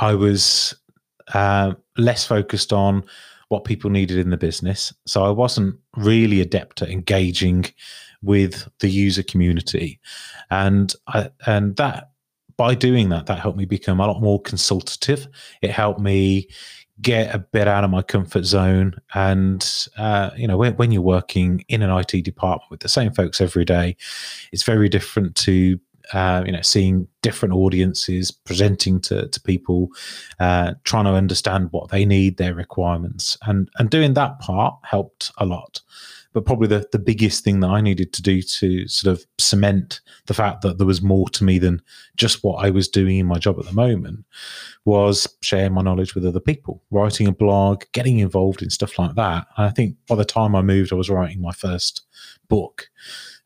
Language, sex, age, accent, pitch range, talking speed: English, male, 30-49, British, 95-110 Hz, 180 wpm